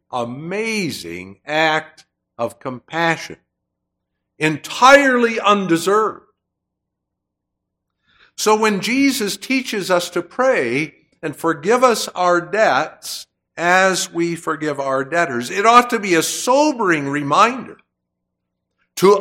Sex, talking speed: male, 95 wpm